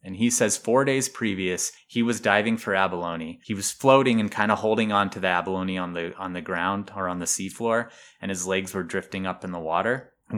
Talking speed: 235 wpm